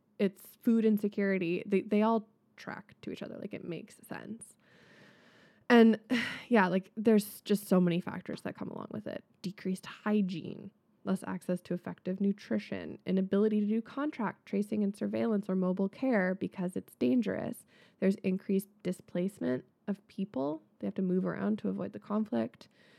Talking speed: 160 wpm